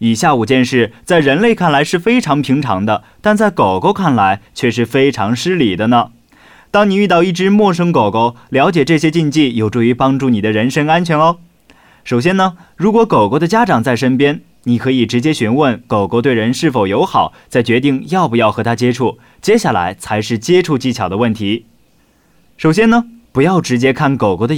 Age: 20-39